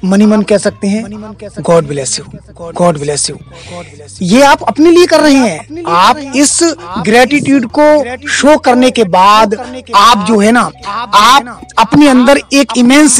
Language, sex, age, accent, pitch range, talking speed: Hindi, male, 30-49, native, 215-275 Hz, 140 wpm